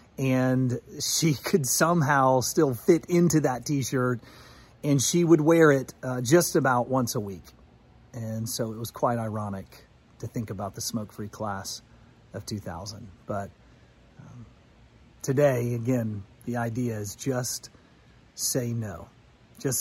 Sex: male